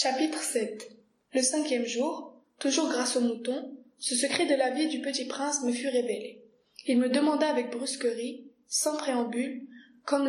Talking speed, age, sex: 165 wpm, 20-39, female